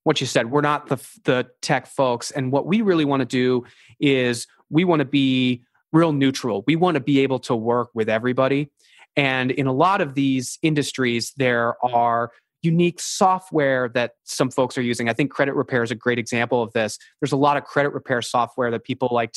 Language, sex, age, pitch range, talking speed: English, male, 20-39, 120-145 Hz, 210 wpm